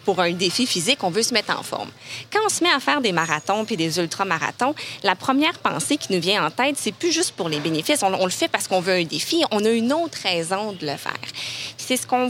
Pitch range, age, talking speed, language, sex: 175-260 Hz, 20-39, 275 wpm, French, female